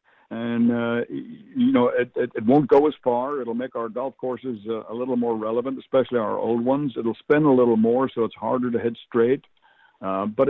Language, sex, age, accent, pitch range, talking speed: English, male, 60-79, American, 110-140 Hz, 215 wpm